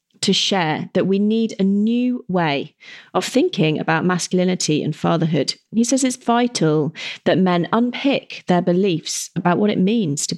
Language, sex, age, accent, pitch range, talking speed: English, female, 30-49, British, 165-215 Hz, 160 wpm